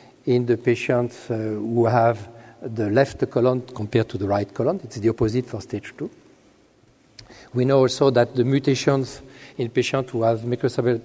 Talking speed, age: 165 wpm, 50-69